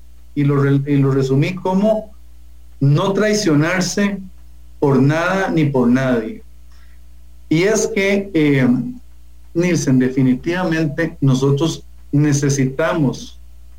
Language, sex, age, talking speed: English, male, 50-69, 90 wpm